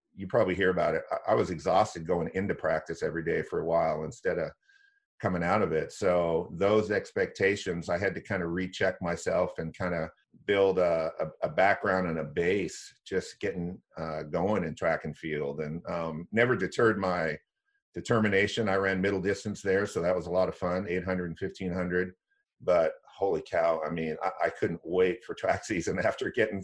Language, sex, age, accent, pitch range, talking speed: English, male, 50-69, American, 90-110 Hz, 195 wpm